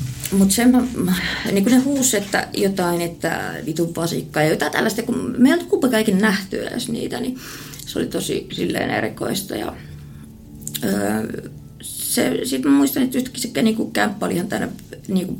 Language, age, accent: Finnish, 20-39, native